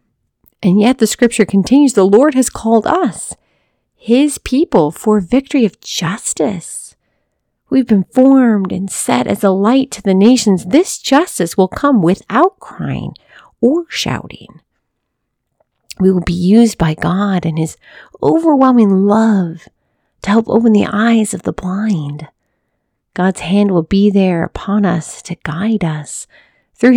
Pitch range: 180-240 Hz